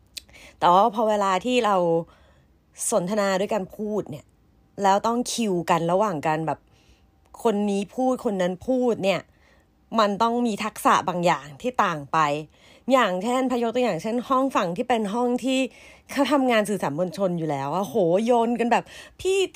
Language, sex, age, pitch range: Thai, female, 30-49, 180-260 Hz